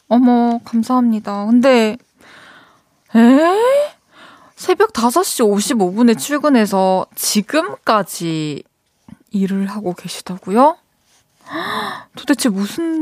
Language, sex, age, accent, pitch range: Korean, female, 20-39, native, 210-285 Hz